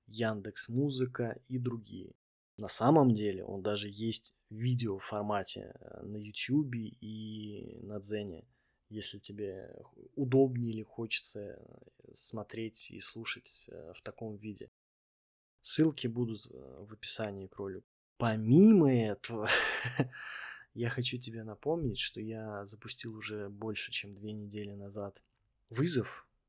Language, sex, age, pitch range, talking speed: Russian, male, 20-39, 105-120 Hz, 115 wpm